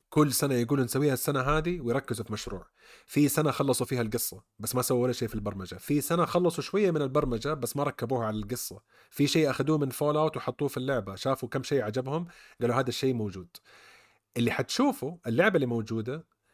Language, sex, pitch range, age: Arabic, male, 110-145 Hz, 30-49